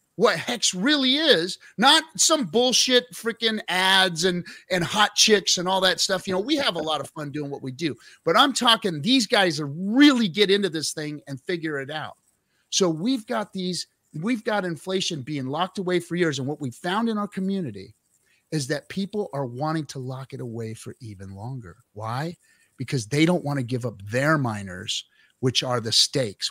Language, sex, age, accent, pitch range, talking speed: English, male, 30-49, American, 130-180 Hz, 200 wpm